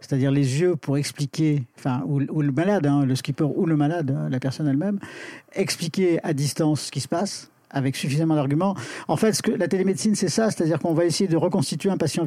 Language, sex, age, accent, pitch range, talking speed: French, male, 50-69, French, 145-175 Hz, 220 wpm